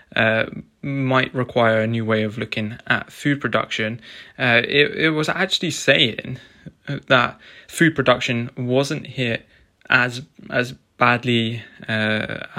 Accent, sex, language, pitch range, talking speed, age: British, male, English, 115-130 Hz, 125 wpm, 20-39